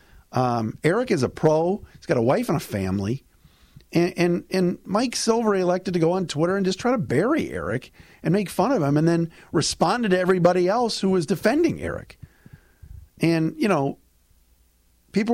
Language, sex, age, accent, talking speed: English, male, 50-69, American, 185 wpm